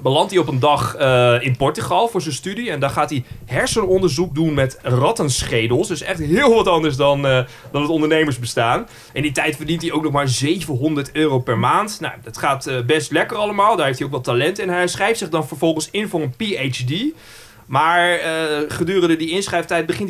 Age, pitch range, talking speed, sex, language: 30-49, 130-170 Hz, 210 wpm, male, Dutch